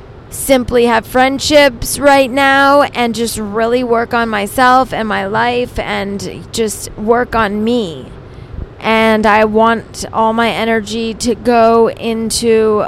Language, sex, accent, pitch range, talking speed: English, female, American, 210-245 Hz, 130 wpm